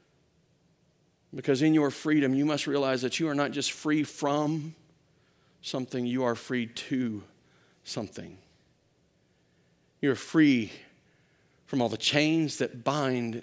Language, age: English, 50-69